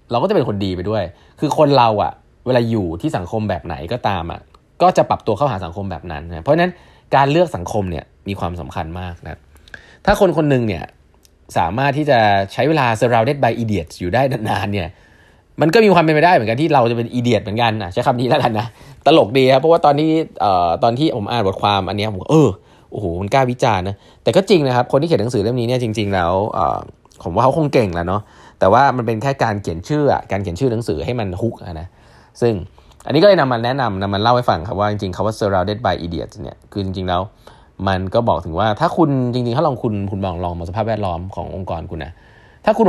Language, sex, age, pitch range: Thai, male, 20-39, 95-135 Hz